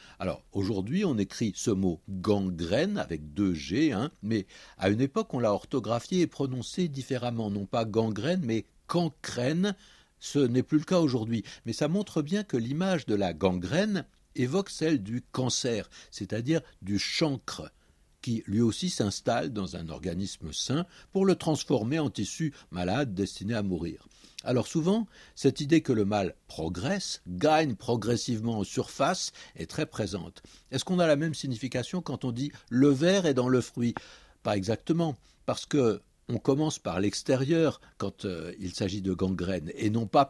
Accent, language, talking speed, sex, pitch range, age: French, French, 165 wpm, male, 100-150 Hz, 60-79